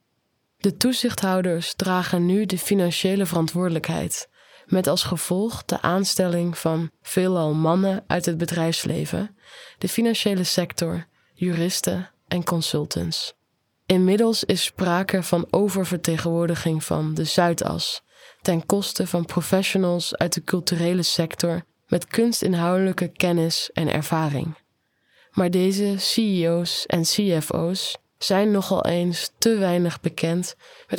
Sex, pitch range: female, 170-190 Hz